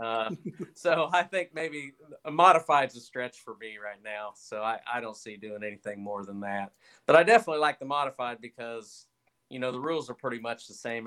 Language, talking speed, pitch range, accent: English, 215 wpm, 115-135 Hz, American